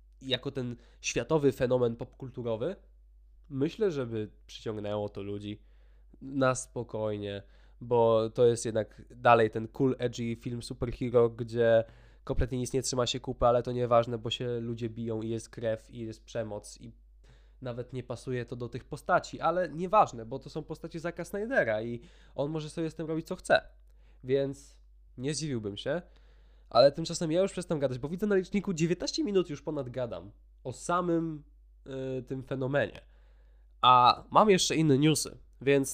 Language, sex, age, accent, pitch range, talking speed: Polish, male, 20-39, native, 115-140 Hz, 160 wpm